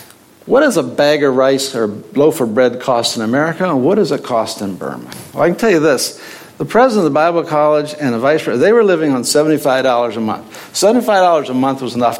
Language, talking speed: English, 235 wpm